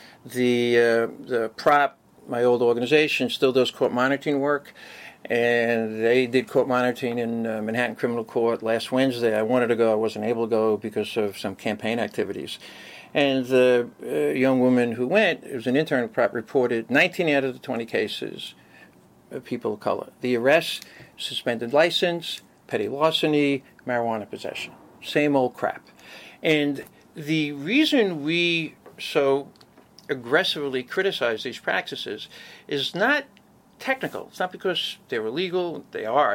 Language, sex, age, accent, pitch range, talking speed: English, male, 50-69, American, 120-165 Hz, 150 wpm